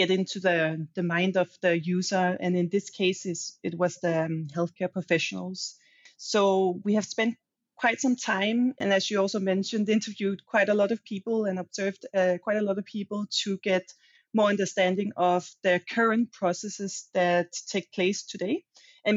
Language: English